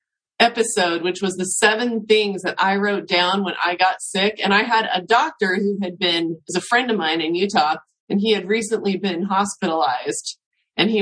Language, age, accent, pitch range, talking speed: English, 30-49, American, 170-210 Hz, 200 wpm